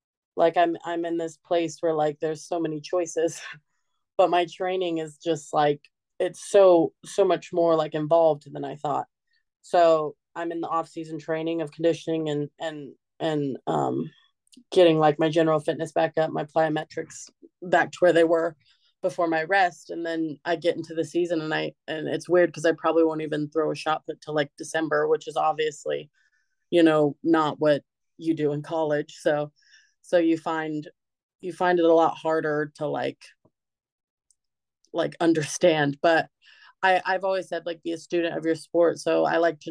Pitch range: 150-170 Hz